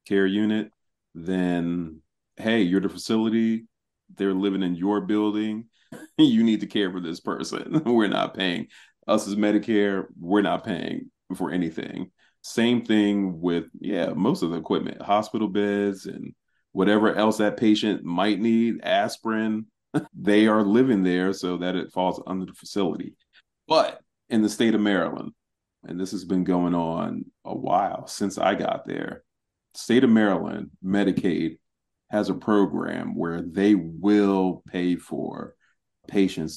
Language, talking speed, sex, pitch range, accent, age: English, 150 wpm, male, 90-105 Hz, American, 30-49